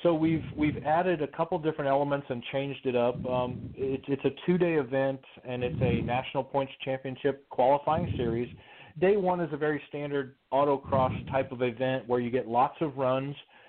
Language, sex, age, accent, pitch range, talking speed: English, male, 40-59, American, 125-145 Hz, 185 wpm